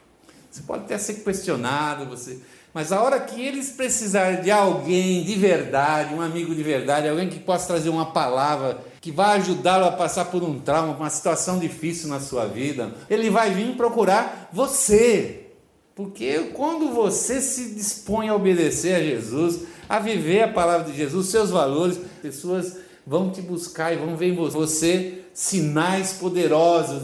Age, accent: 60-79, Brazilian